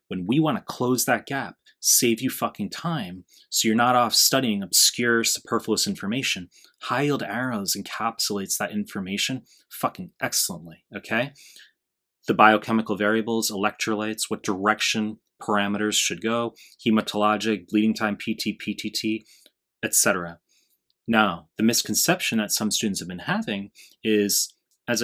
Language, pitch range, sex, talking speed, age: English, 100-115 Hz, male, 130 wpm, 30-49